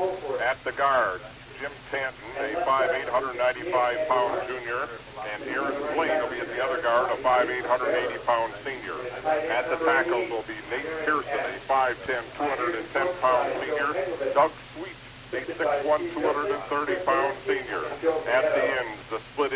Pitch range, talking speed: 130-165 Hz, 140 wpm